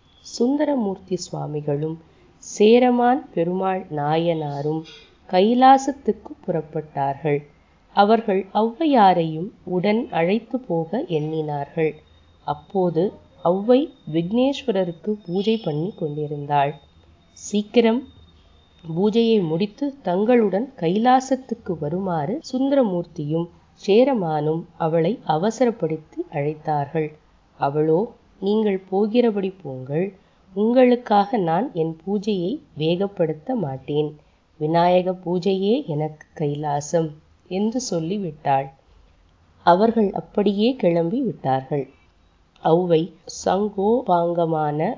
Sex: female